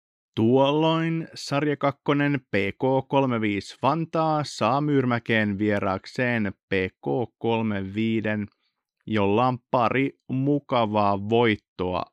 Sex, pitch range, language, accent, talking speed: male, 105-130 Hz, Finnish, native, 65 wpm